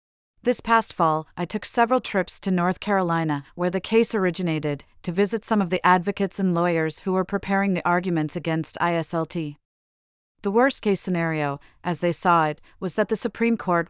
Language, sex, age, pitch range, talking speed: English, female, 40-59, 165-200 Hz, 175 wpm